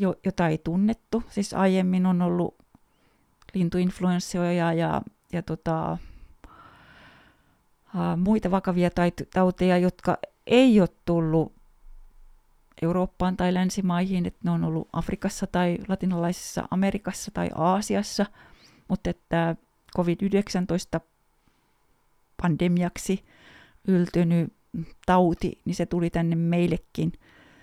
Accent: native